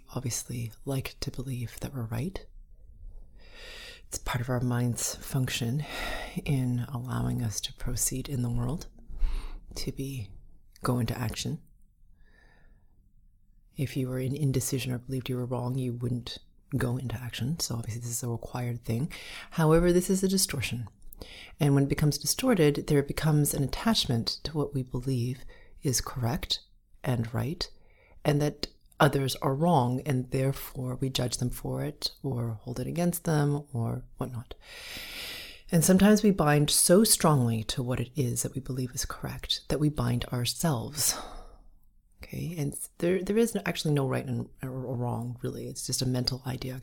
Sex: female